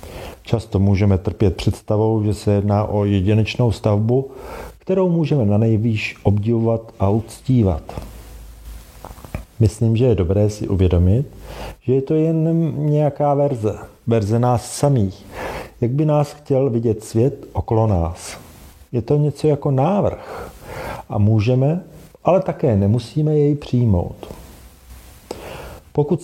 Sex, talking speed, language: male, 120 wpm, Czech